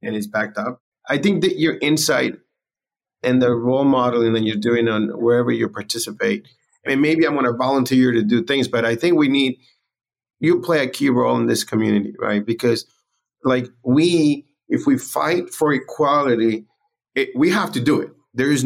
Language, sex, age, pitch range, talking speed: English, male, 30-49, 115-140 Hz, 185 wpm